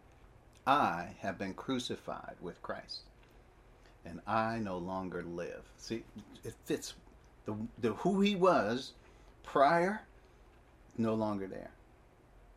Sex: male